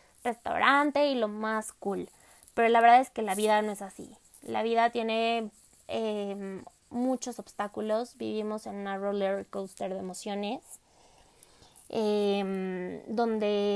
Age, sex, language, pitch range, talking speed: 20-39, female, Spanish, 215-245 Hz, 130 wpm